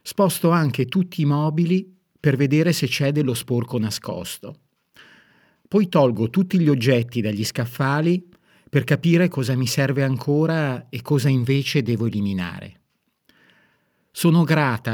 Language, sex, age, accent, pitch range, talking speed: Italian, male, 50-69, native, 115-155 Hz, 130 wpm